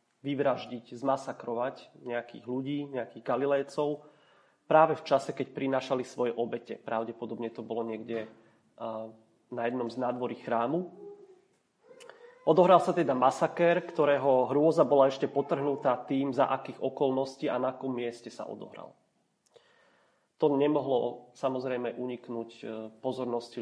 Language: Slovak